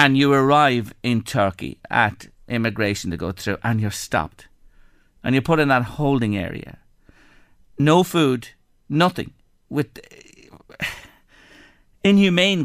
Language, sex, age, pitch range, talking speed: English, male, 50-69, 105-145 Hz, 120 wpm